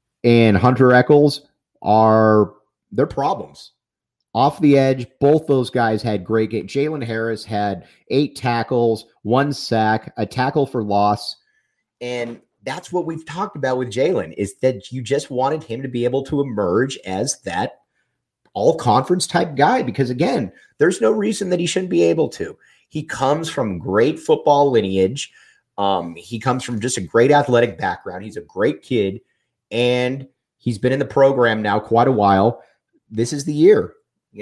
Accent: American